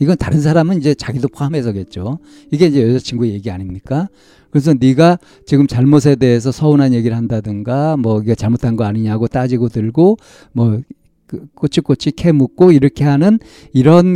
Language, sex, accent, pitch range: Korean, male, native, 110-160 Hz